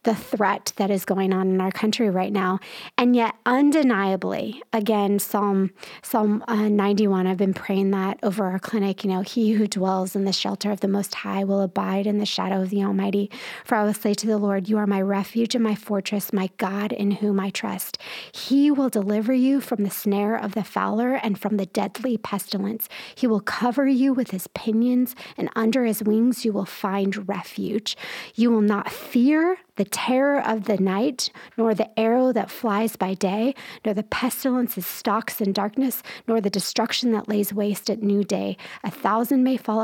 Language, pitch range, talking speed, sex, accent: English, 200-235 Hz, 200 wpm, female, American